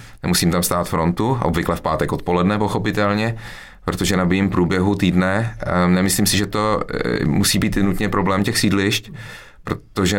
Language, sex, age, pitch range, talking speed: Czech, male, 30-49, 80-100 Hz, 140 wpm